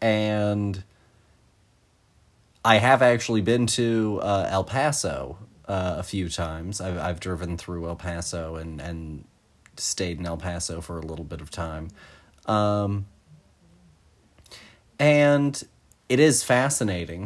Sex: male